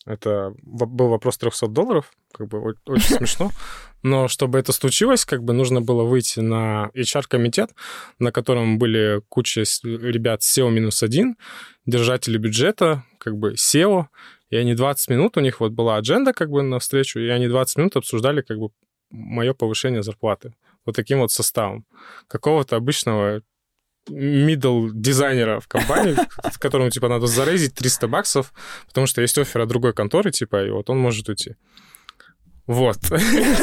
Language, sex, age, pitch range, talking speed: Russian, male, 20-39, 120-155 Hz, 150 wpm